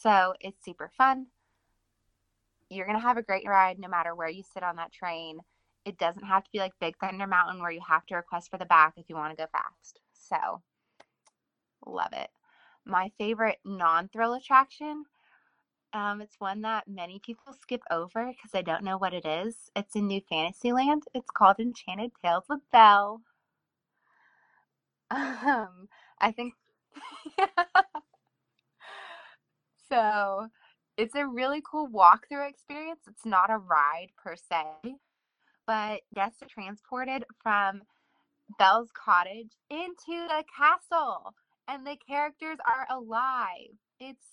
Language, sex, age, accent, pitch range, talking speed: English, female, 20-39, American, 180-245 Hz, 145 wpm